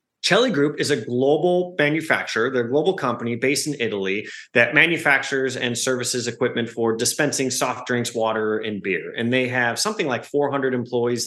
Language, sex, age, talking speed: English, male, 30-49, 160 wpm